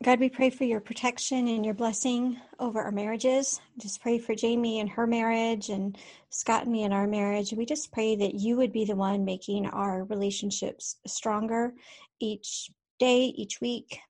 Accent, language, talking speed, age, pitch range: American, English, 185 wpm, 40-59, 205-235 Hz